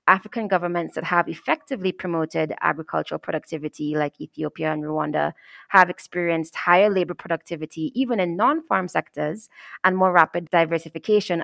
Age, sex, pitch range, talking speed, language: 20-39, female, 160-205 Hz, 130 wpm, English